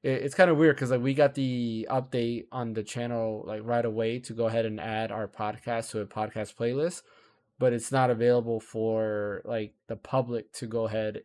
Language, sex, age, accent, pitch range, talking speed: English, male, 20-39, American, 115-135 Hz, 205 wpm